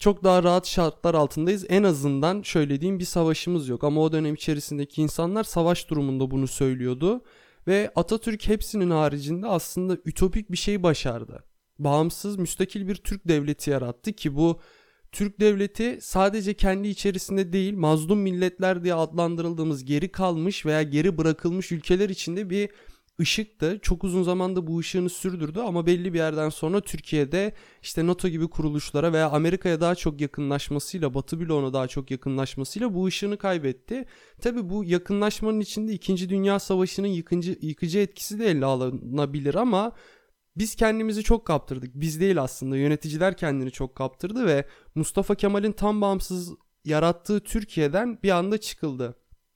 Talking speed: 145 wpm